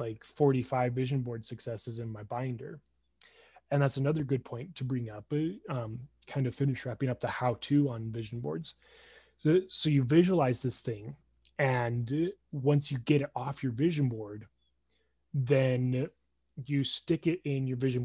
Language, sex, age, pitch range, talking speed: English, male, 20-39, 120-155 Hz, 165 wpm